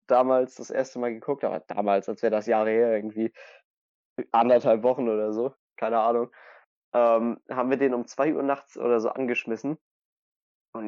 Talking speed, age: 170 wpm, 20-39